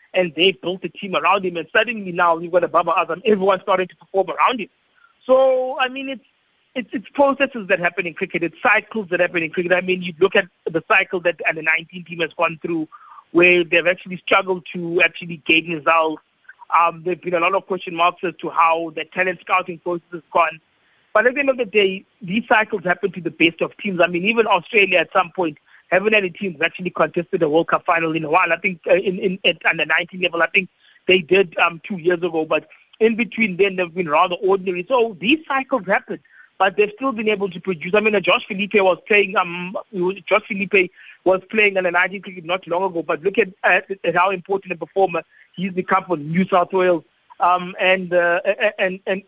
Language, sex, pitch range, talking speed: English, male, 175-210 Hz, 225 wpm